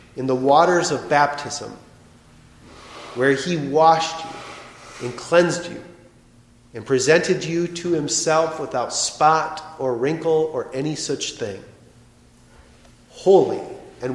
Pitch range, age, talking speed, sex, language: 120-160 Hz, 40-59, 115 wpm, male, English